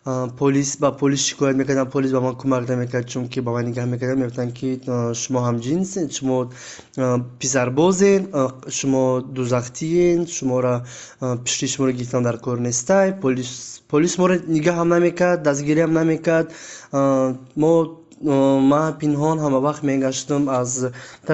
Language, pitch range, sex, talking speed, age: English, 130-160 Hz, male, 95 wpm, 20-39